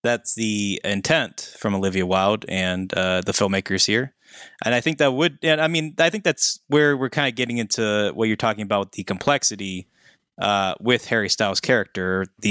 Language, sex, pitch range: English, male, 100-130 Hz